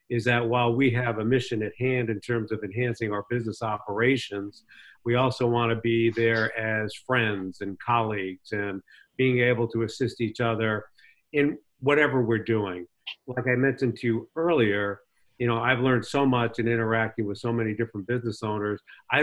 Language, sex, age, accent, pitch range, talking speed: English, male, 50-69, American, 105-125 Hz, 180 wpm